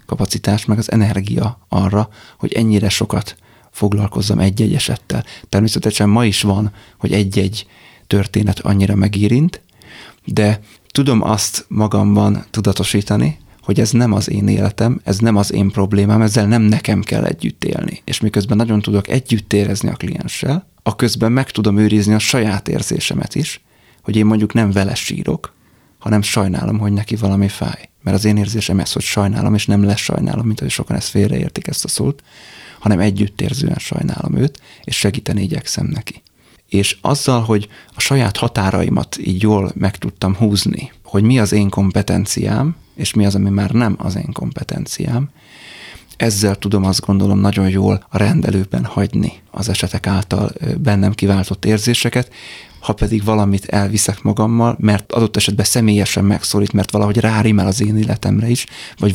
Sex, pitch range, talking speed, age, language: male, 100-115 Hz, 155 wpm, 30-49, Hungarian